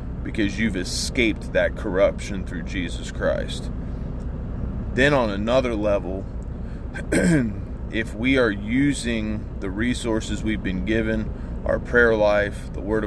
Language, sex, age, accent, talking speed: English, male, 30-49, American, 120 wpm